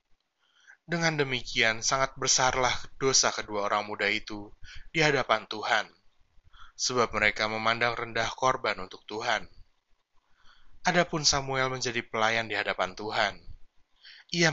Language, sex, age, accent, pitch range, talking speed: Indonesian, male, 20-39, native, 110-135 Hz, 110 wpm